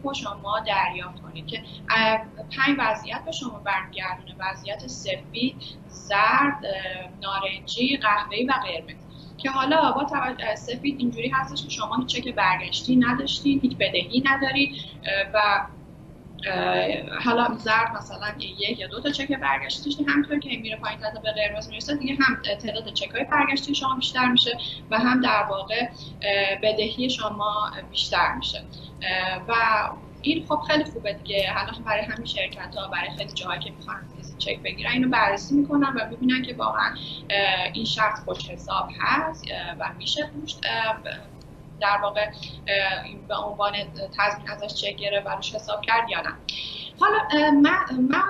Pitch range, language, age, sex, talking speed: 195-265 Hz, Persian, 10-29, female, 145 wpm